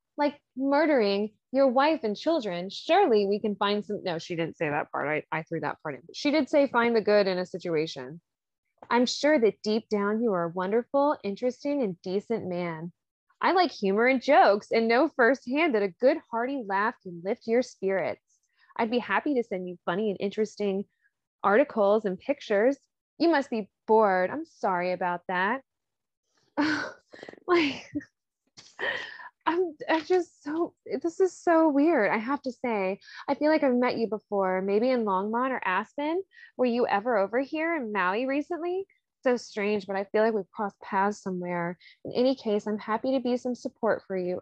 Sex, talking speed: female, 185 wpm